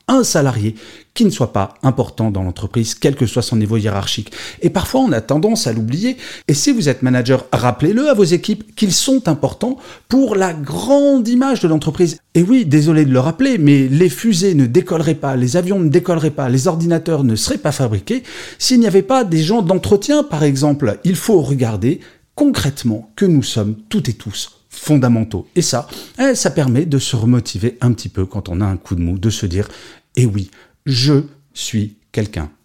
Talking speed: 200 wpm